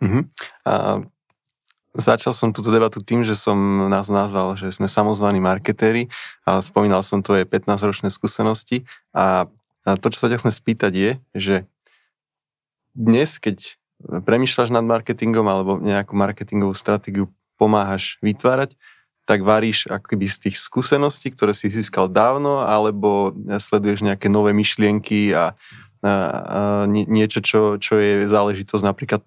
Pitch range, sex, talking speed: 100-110 Hz, male, 125 wpm